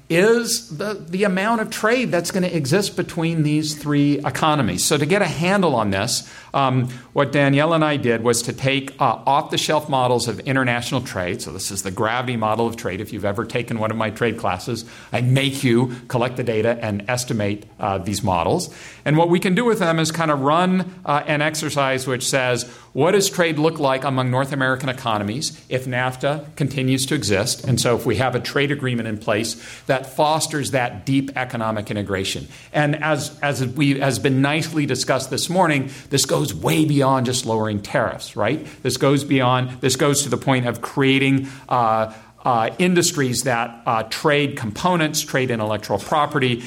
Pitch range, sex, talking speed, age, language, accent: 115-150 Hz, male, 190 wpm, 50-69, English, American